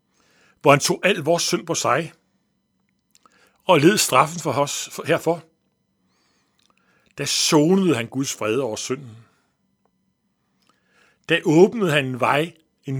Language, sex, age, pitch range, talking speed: Danish, male, 60-79, 130-170 Hz, 125 wpm